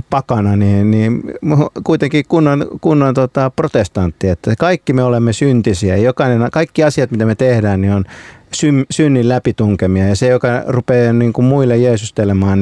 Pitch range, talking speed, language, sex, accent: 100-125 Hz, 155 wpm, Finnish, male, native